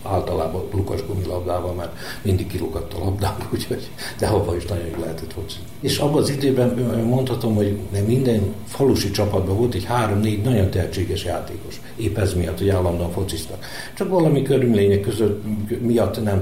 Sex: male